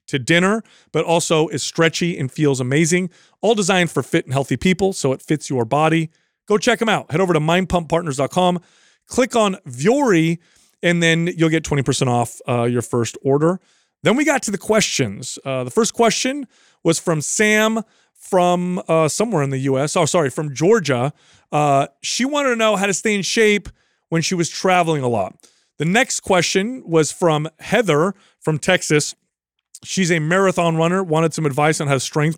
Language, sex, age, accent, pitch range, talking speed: English, male, 30-49, American, 145-190 Hz, 185 wpm